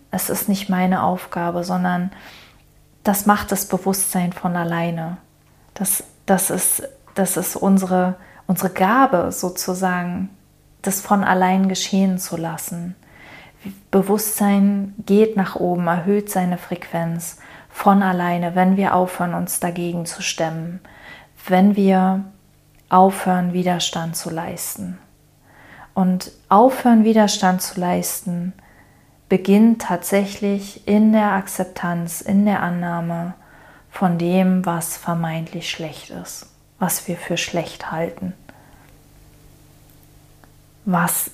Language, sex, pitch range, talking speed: German, female, 170-195 Hz, 105 wpm